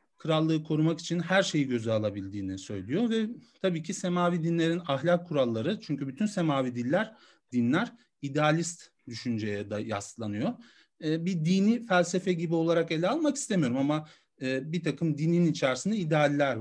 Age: 40-59